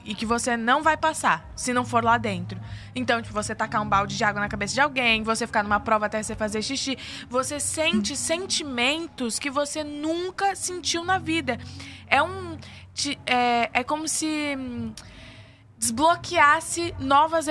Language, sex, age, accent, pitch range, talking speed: Portuguese, female, 20-39, Brazilian, 240-295 Hz, 165 wpm